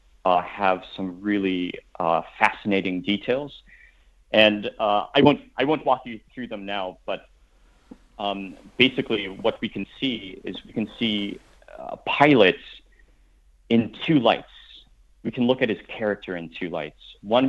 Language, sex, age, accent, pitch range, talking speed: English, male, 30-49, American, 90-110 Hz, 150 wpm